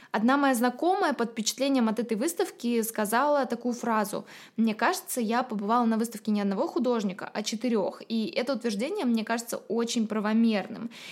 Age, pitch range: 20-39, 205-245 Hz